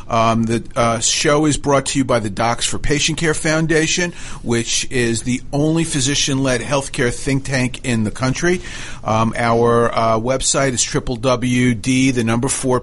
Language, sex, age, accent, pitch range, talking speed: English, male, 40-59, American, 120-140 Hz, 170 wpm